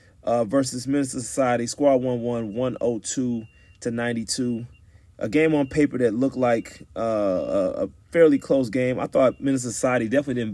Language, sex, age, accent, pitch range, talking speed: English, male, 30-49, American, 105-125 Hz, 160 wpm